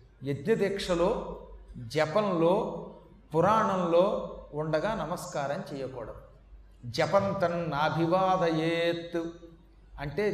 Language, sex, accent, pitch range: Telugu, male, native, 160-195 Hz